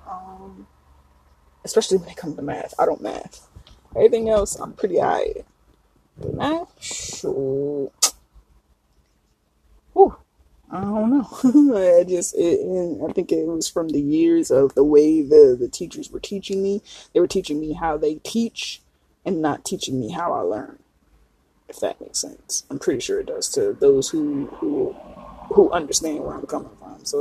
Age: 20-39